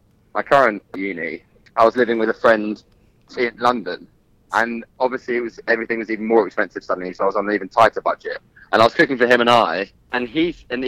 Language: English